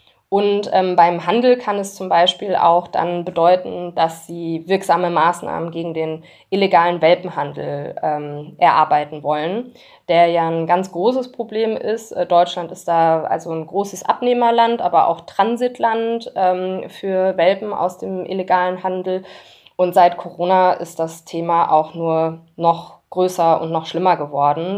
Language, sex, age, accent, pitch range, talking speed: German, female, 20-39, German, 165-205 Hz, 145 wpm